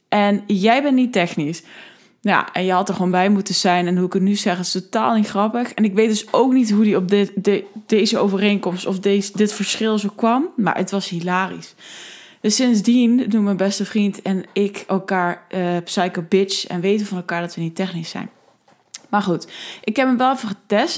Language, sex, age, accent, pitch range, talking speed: Dutch, female, 20-39, Dutch, 185-220 Hz, 205 wpm